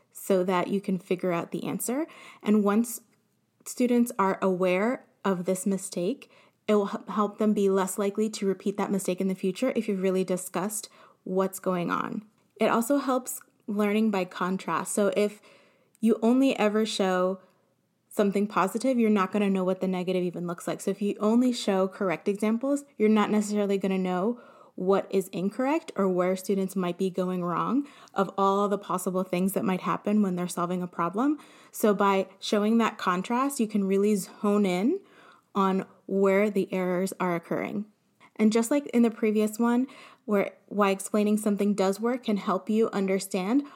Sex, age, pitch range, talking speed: female, 20-39, 190-220 Hz, 180 wpm